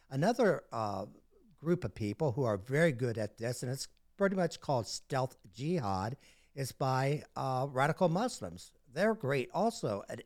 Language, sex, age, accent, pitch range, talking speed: English, male, 60-79, American, 110-155 Hz, 160 wpm